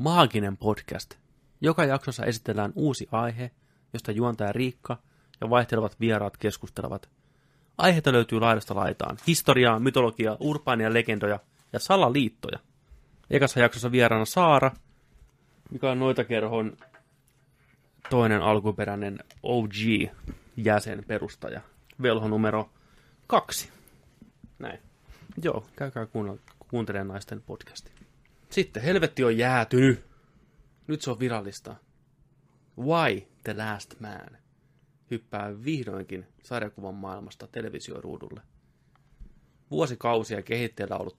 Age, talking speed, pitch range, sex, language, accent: 30-49, 95 wpm, 105-135 Hz, male, Finnish, native